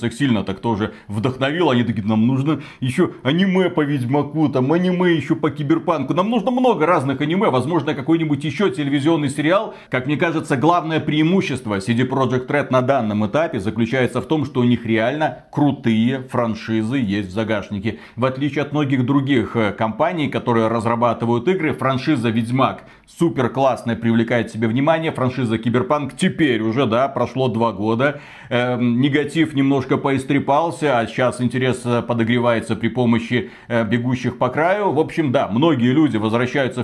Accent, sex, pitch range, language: native, male, 120-155 Hz, Russian